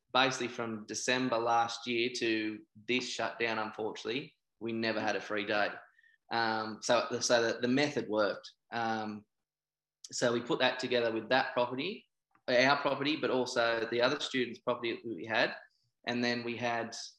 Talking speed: 160 wpm